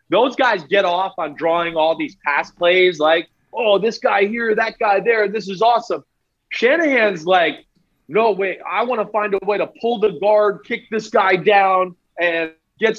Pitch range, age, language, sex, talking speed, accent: 170-205 Hz, 30-49, English, male, 190 wpm, American